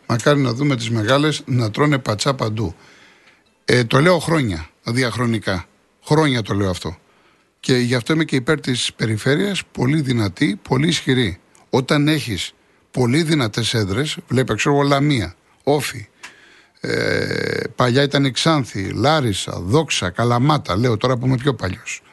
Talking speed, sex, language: 145 wpm, male, Greek